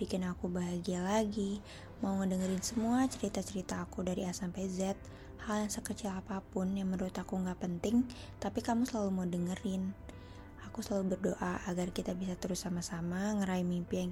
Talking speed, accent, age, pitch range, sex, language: 160 wpm, native, 20-39, 175-200 Hz, female, Indonesian